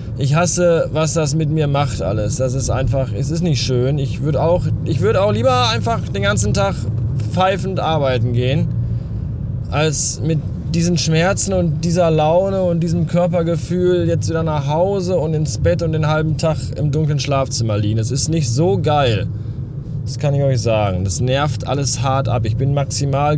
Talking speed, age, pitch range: 180 wpm, 20-39, 120-160 Hz